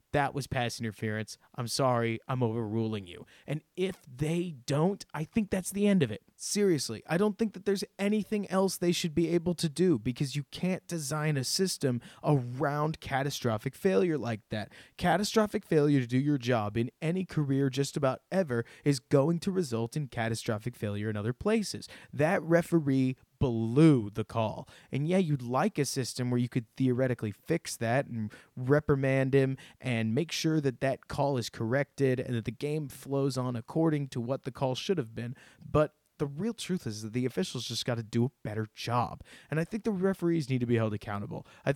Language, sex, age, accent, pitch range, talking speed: English, male, 20-39, American, 120-165 Hz, 195 wpm